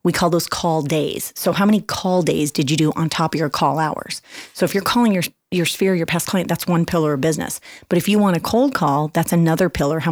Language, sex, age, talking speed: English, female, 30-49, 265 wpm